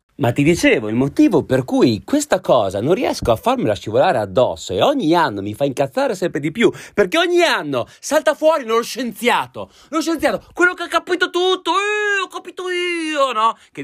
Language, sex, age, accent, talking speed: Italian, male, 30-49, native, 190 wpm